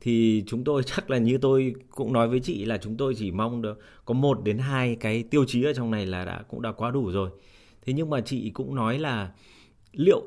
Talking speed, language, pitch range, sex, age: 245 wpm, Vietnamese, 105-130 Hz, male, 20-39